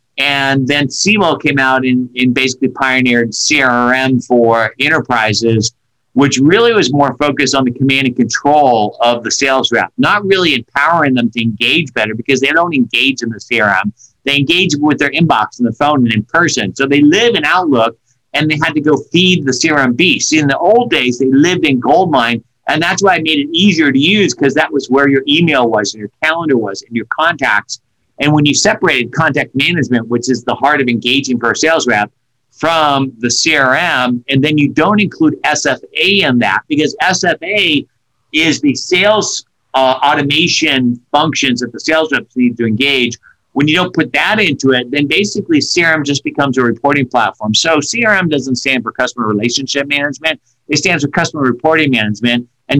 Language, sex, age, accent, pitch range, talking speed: English, male, 50-69, American, 125-150 Hz, 195 wpm